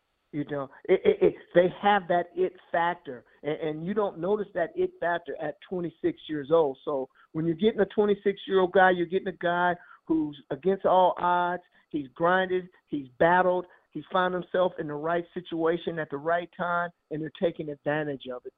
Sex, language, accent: male, English, American